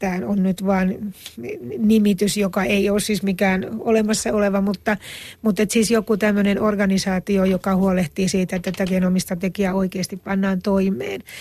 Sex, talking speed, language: female, 135 wpm, Finnish